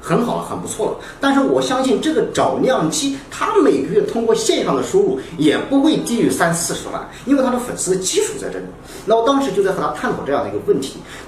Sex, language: male, Chinese